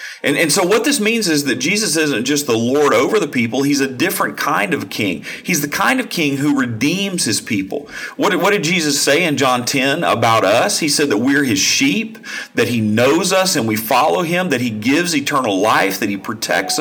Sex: male